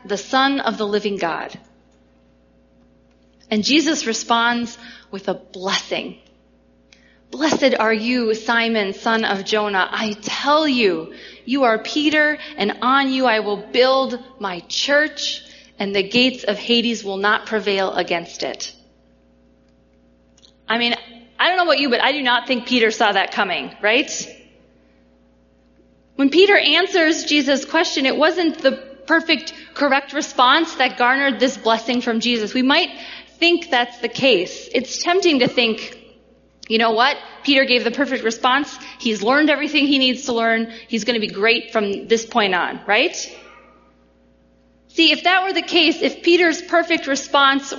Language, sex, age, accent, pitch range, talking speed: English, female, 30-49, American, 205-275 Hz, 155 wpm